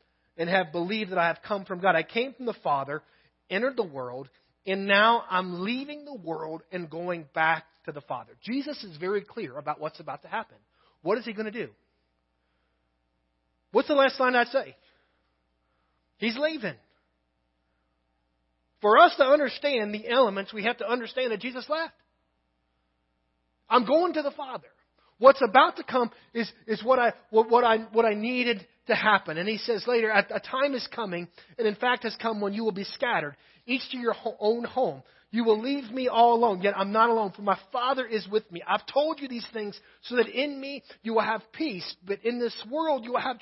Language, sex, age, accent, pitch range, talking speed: English, male, 30-49, American, 165-250 Hz, 200 wpm